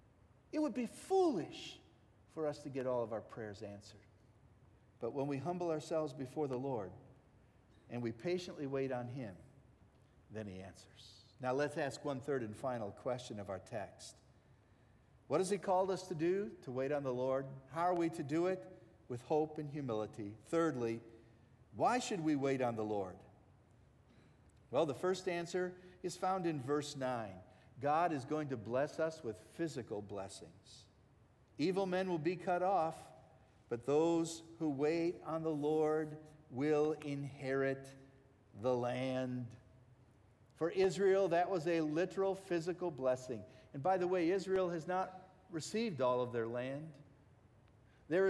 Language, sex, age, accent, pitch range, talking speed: English, male, 50-69, American, 120-170 Hz, 160 wpm